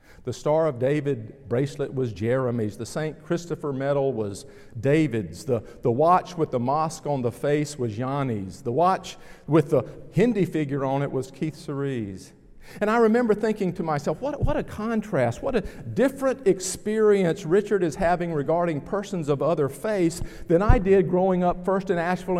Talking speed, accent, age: 175 wpm, American, 50-69